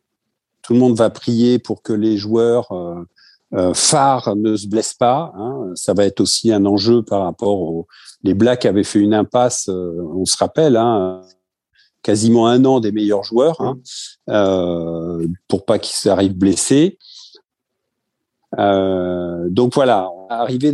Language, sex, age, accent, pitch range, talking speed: French, male, 50-69, French, 100-135 Hz, 160 wpm